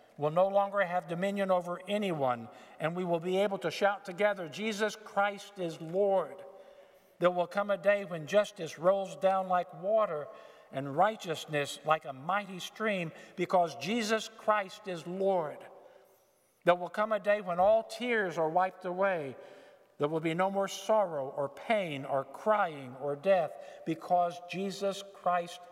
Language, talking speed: English, 155 wpm